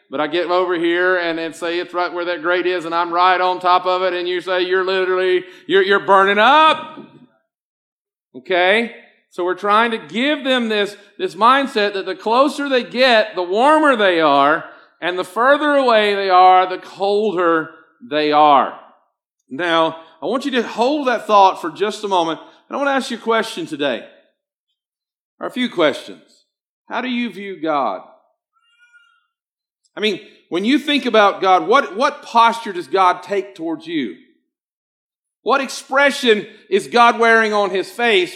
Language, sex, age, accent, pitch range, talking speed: English, male, 40-59, American, 185-260 Hz, 175 wpm